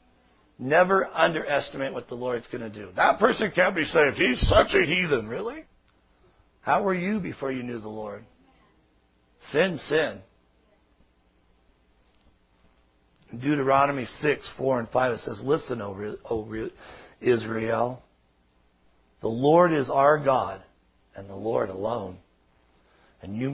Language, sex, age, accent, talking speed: English, male, 60-79, American, 125 wpm